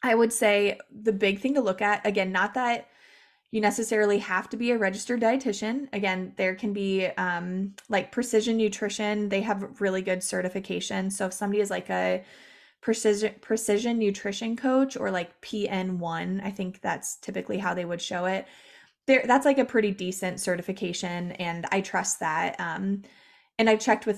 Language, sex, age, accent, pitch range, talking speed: English, female, 20-39, American, 190-230 Hz, 180 wpm